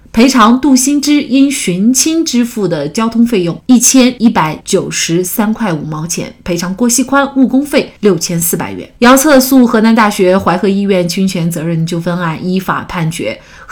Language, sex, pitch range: Chinese, female, 175-250 Hz